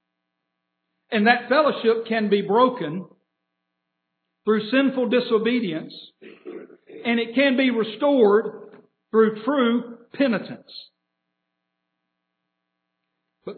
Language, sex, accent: English, male, American